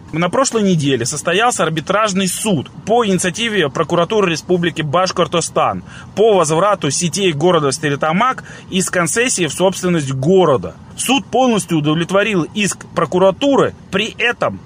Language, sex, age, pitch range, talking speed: Russian, male, 30-49, 155-205 Hz, 115 wpm